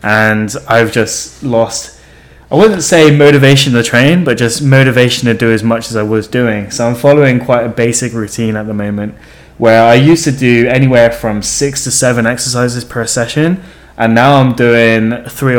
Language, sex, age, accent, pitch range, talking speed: English, male, 10-29, British, 115-140 Hz, 190 wpm